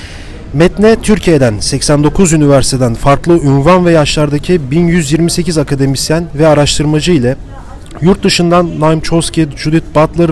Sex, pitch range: male, 135-165 Hz